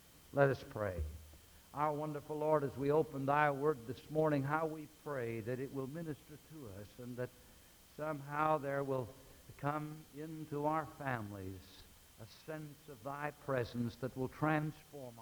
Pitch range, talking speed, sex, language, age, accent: 120-150 Hz, 155 wpm, male, English, 60-79, American